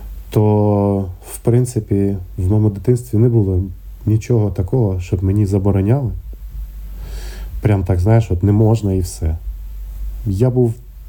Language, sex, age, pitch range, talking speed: Ukrainian, male, 20-39, 85-100 Hz, 125 wpm